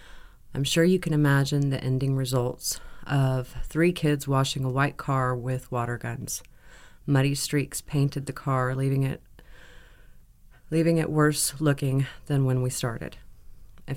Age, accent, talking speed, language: 30-49, American, 145 wpm, English